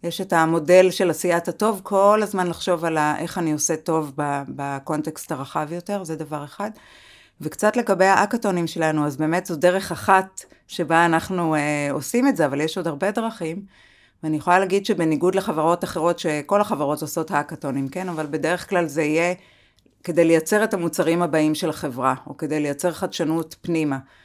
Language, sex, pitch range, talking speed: Hebrew, female, 155-185 Hz, 165 wpm